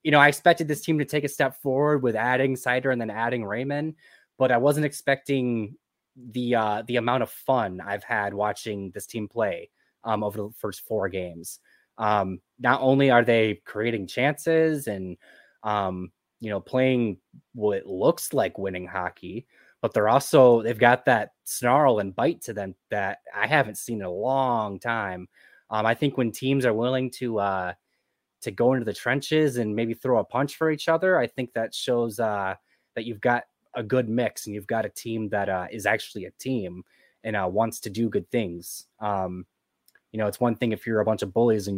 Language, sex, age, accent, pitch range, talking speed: English, male, 20-39, American, 105-135 Hz, 200 wpm